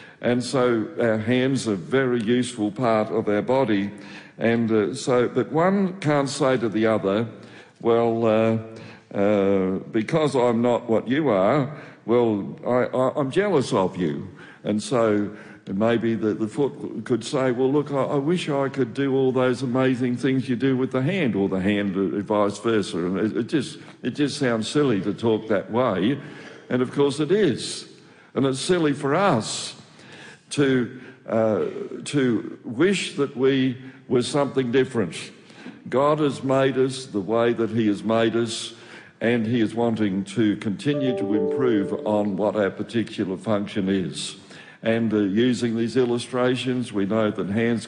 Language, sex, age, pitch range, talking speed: English, male, 60-79, 105-130 Hz, 165 wpm